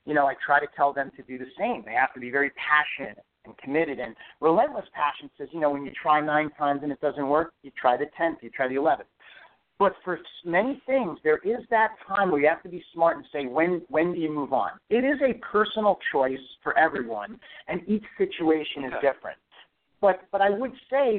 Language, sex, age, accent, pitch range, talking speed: English, male, 50-69, American, 150-210 Hz, 230 wpm